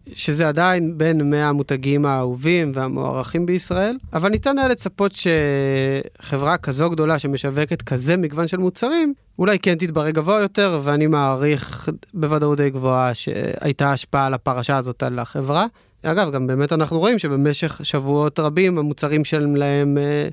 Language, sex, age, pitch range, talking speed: Hebrew, male, 30-49, 135-165 Hz, 135 wpm